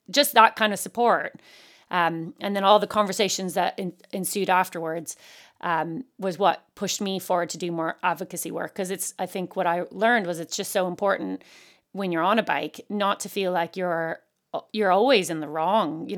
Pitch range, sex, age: 175-205 Hz, female, 30-49